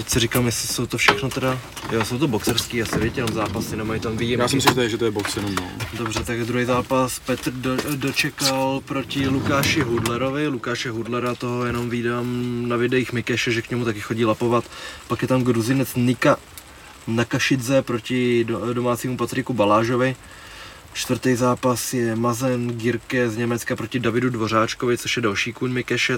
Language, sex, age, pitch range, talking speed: Czech, male, 20-39, 115-125 Hz, 160 wpm